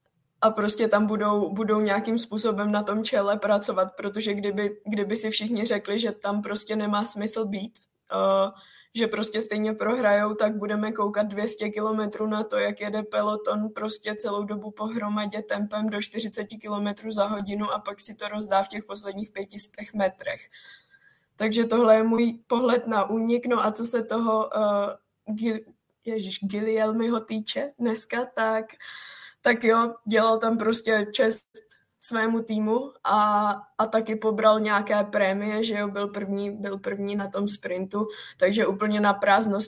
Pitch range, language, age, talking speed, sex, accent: 205-220 Hz, Czech, 20-39, 160 wpm, female, native